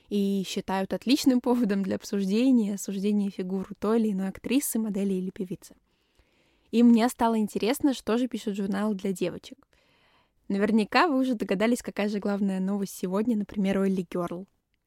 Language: Russian